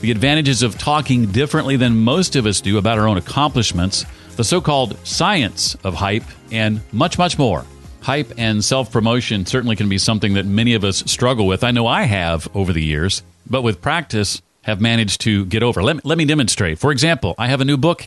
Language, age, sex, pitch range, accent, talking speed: English, 40-59, male, 100-130 Hz, American, 205 wpm